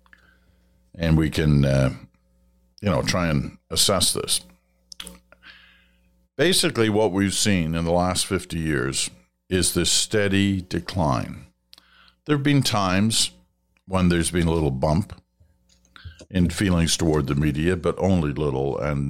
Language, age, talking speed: English, 60-79, 130 wpm